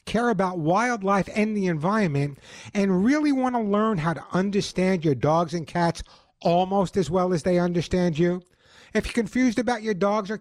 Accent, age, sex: American, 60-79, male